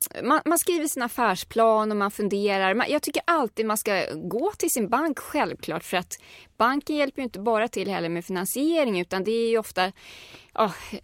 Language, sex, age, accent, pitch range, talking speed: Swedish, female, 30-49, native, 175-230 Hz, 195 wpm